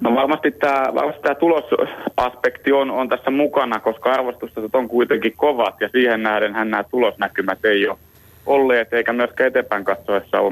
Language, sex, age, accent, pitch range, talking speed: Finnish, male, 30-49, native, 105-125 Hz, 160 wpm